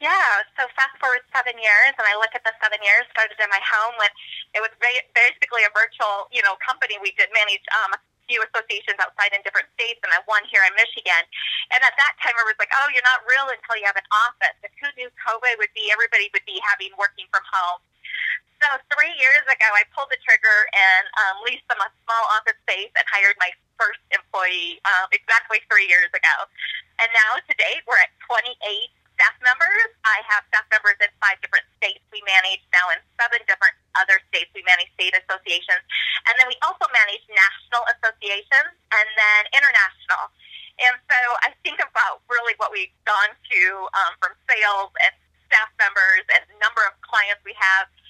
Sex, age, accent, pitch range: female, 20-39, American, 195-250 Hz